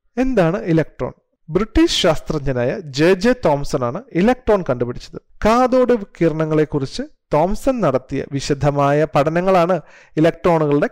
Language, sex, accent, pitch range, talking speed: Malayalam, male, native, 140-210 Hz, 100 wpm